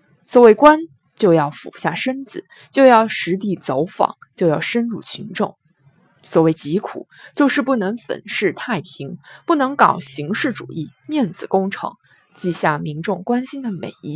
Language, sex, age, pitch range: Chinese, female, 20-39, 165-245 Hz